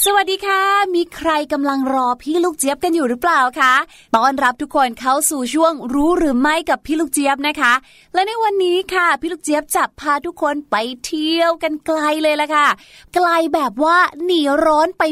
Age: 20-39